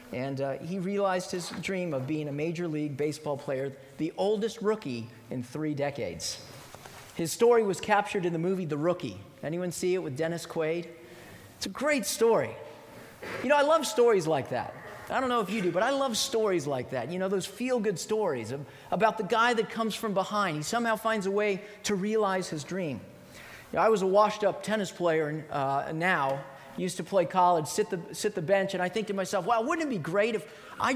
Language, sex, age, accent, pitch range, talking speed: English, male, 40-59, American, 160-220 Hz, 205 wpm